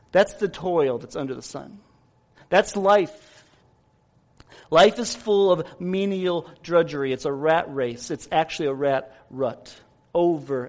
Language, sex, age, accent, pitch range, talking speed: English, male, 40-59, American, 190-260 Hz, 140 wpm